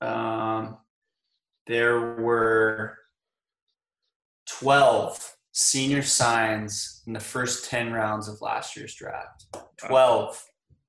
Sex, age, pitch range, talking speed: male, 20-39, 115-135 Hz, 90 wpm